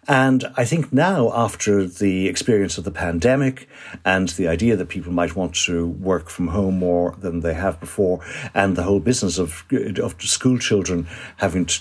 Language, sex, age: English, male, 60-79